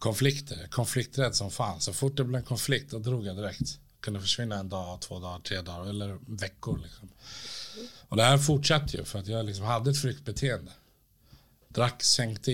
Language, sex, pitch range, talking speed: Swedish, male, 105-140 Hz, 190 wpm